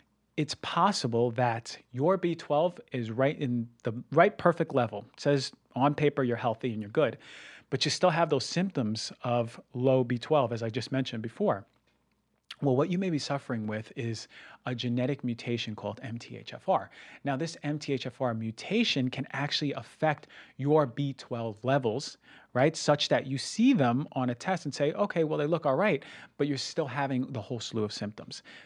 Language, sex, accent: English, male, American